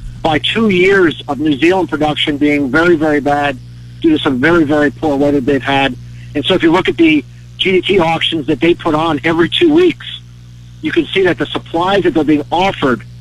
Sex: male